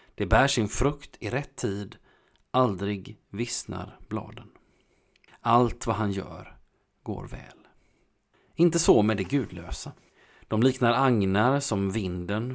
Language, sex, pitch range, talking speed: Swedish, male, 95-120 Hz, 125 wpm